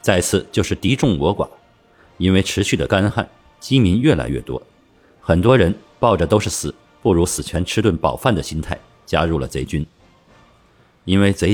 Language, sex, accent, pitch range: Chinese, male, native, 85-105 Hz